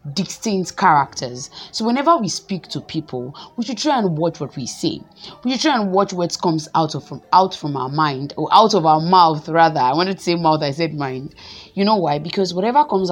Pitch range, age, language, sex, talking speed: 150-205 Hz, 20-39, English, female, 230 wpm